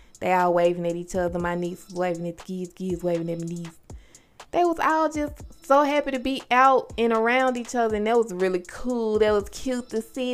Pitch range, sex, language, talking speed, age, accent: 185-245 Hz, female, English, 230 wpm, 20-39, American